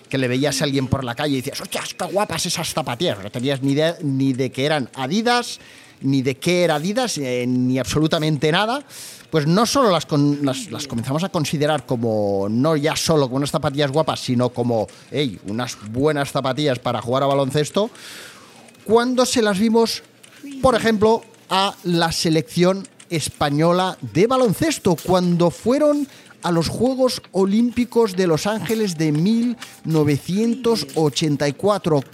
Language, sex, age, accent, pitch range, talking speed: Spanish, male, 30-49, Spanish, 140-185 Hz, 155 wpm